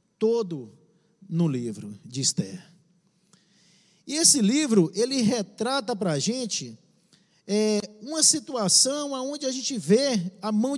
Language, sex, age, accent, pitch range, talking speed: Portuguese, male, 50-69, Brazilian, 180-260 Hz, 120 wpm